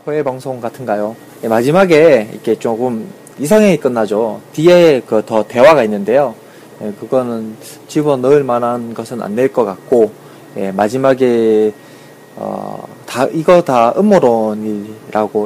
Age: 20-39